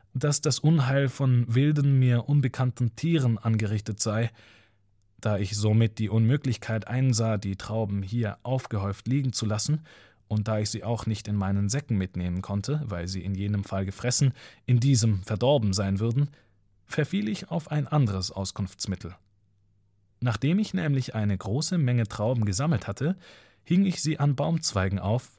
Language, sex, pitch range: German, male, 100-135 Hz